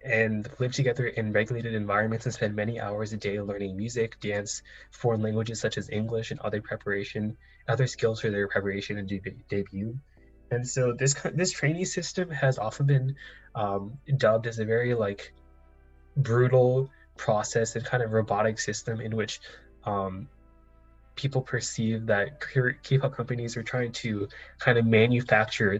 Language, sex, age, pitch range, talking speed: English, male, 10-29, 105-125 Hz, 160 wpm